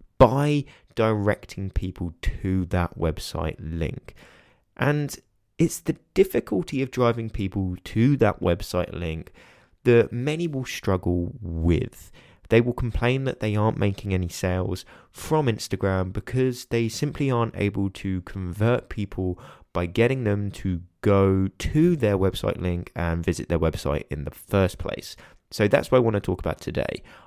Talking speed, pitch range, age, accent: 150 wpm, 90-115 Hz, 20-39, British